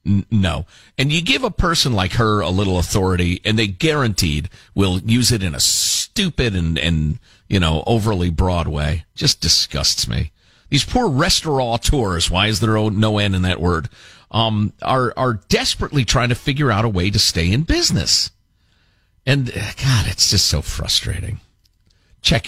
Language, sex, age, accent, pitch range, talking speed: English, male, 50-69, American, 90-115 Hz, 170 wpm